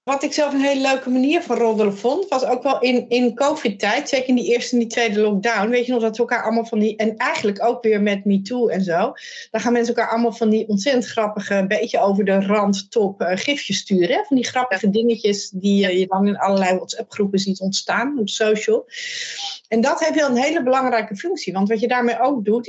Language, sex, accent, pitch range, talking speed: Dutch, female, Dutch, 200-255 Hz, 235 wpm